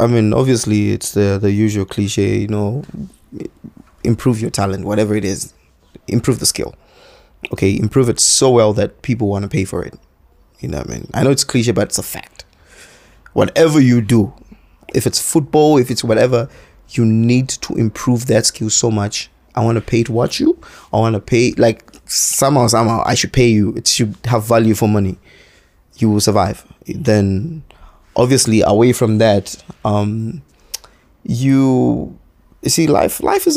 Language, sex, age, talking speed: English, male, 20-39, 180 wpm